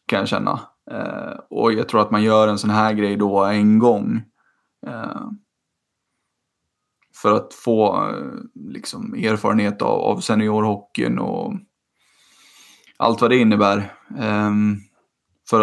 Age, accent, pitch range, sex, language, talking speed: 20-39, native, 105-125 Hz, male, Swedish, 130 wpm